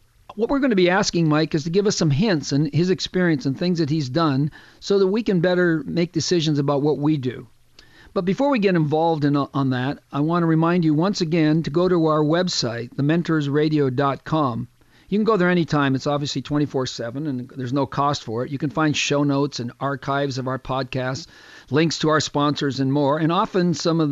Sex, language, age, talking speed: male, English, 50-69, 215 wpm